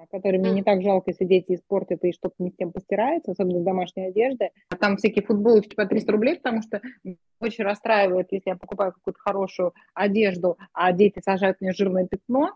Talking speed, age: 185 wpm, 20-39